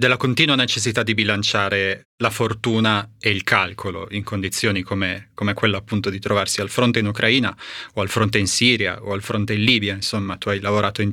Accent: native